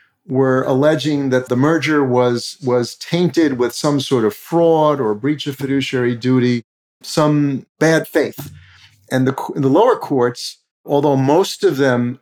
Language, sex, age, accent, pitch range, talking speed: English, male, 50-69, American, 125-150 Hz, 150 wpm